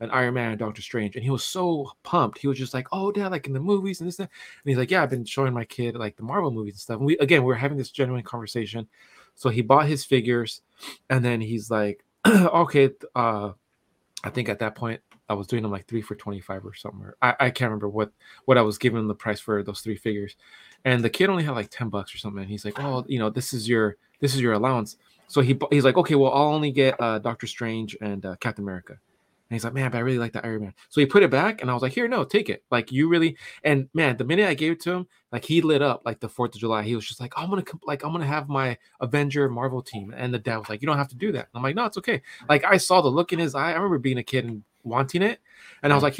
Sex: male